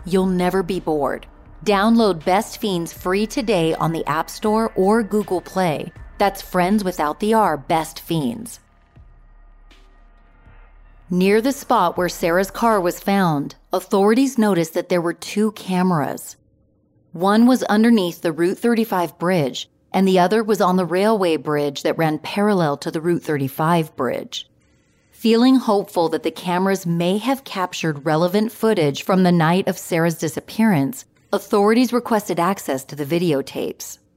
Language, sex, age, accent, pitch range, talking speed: English, female, 30-49, American, 155-210 Hz, 145 wpm